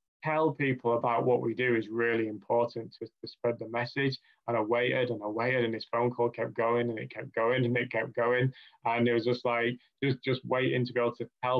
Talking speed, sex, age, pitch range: 250 wpm, male, 20-39, 115-130 Hz